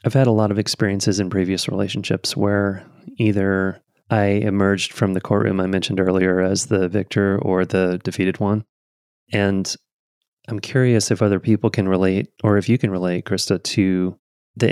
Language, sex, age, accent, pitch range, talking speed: English, male, 30-49, American, 95-105 Hz, 170 wpm